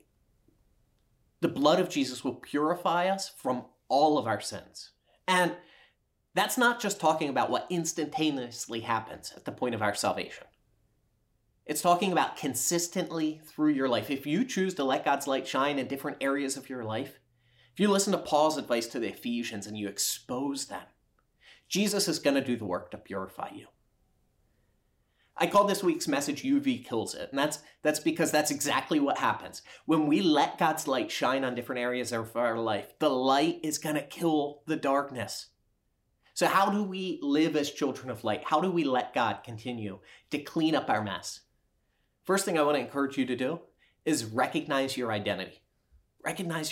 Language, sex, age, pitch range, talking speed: English, male, 30-49, 125-170 Hz, 180 wpm